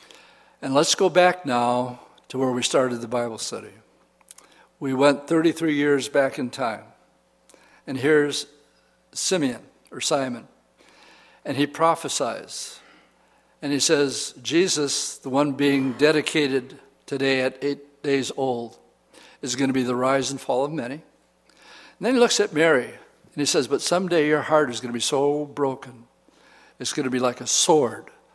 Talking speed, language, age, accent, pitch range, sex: 160 wpm, English, 60-79, American, 125-145 Hz, male